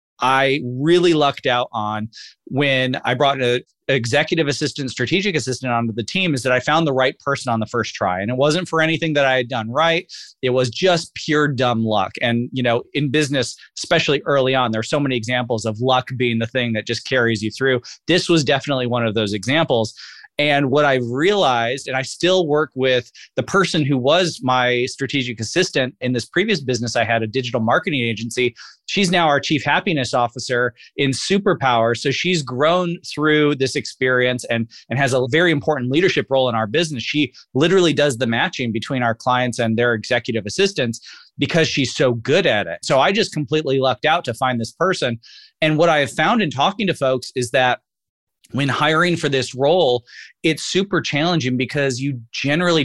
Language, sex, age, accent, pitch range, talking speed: English, male, 30-49, American, 125-155 Hz, 200 wpm